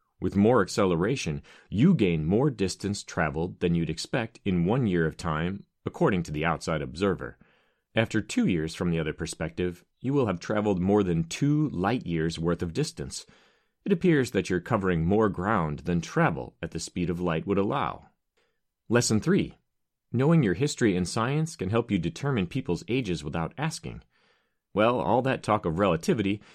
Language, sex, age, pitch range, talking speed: English, male, 30-49, 85-120 Hz, 175 wpm